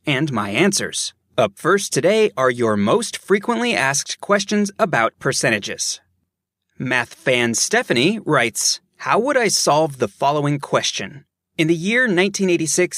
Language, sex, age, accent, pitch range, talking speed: English, male, 30-49, American, 130-190 Hz, 135 wpm